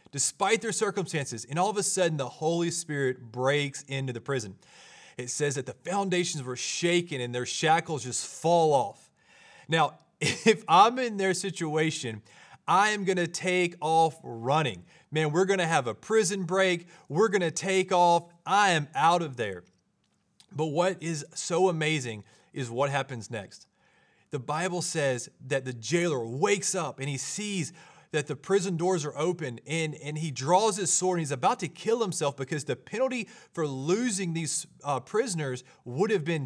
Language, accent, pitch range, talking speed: English, American, 135-185 Hz, 180 wpm